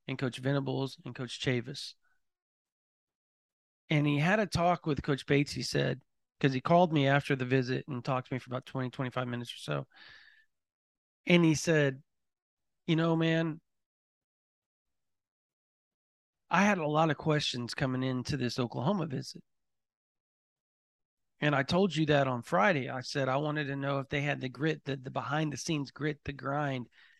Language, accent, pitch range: English, American, 135-155 Hz